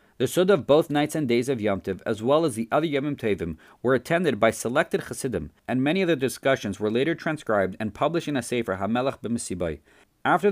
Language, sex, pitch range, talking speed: English, male, 100-140 Hz, 215 wpm